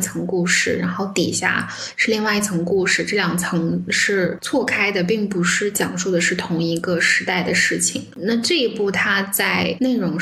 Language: Chinese